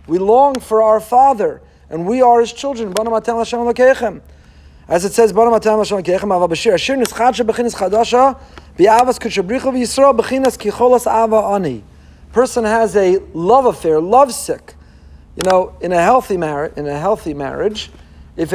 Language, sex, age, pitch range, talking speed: English, male, 40-59, 180-245 Hz, 95 wpm